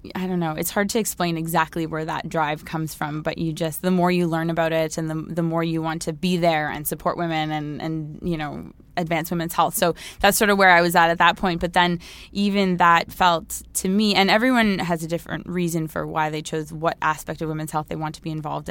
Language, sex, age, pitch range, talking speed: English, female, 20-39, 160-180 Hz, 255 wpm